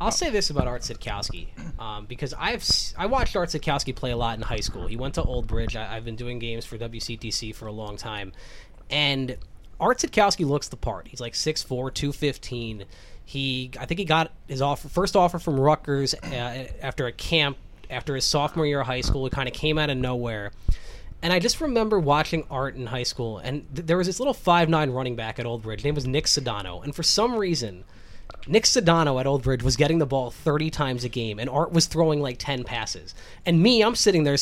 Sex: male